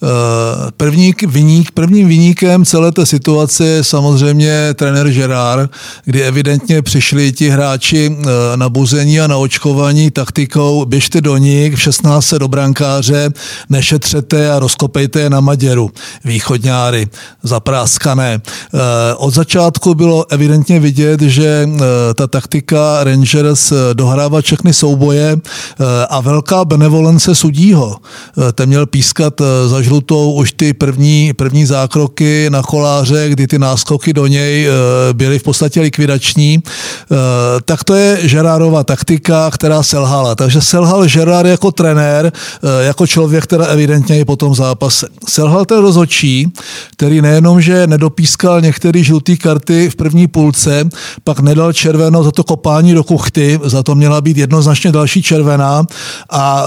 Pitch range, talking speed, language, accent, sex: 140-160 Hz, 130 wpm, Czech, native, male